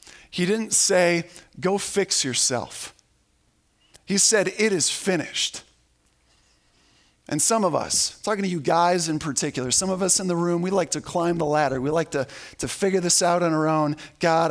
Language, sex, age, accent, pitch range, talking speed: English, male, 40-59, American, 140-190 Hz, 180 wpm